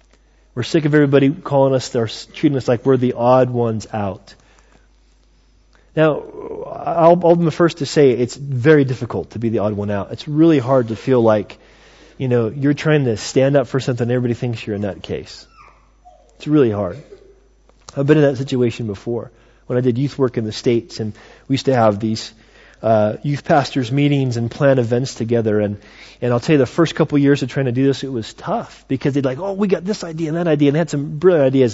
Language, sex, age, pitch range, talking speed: English, male, 30-49, 120-165 Hz, 230 wpm